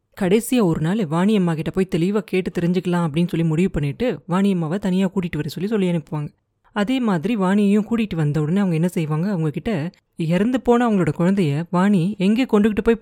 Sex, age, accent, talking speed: female, 20-39, native, 175 wpm